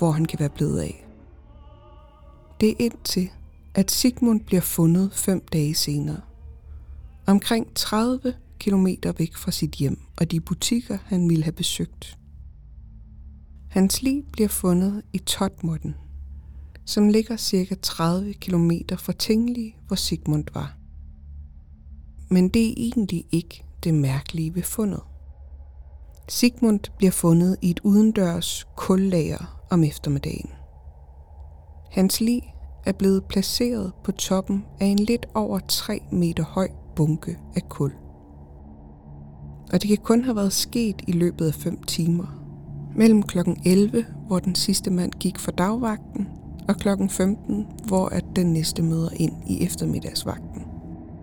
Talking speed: 130 wpm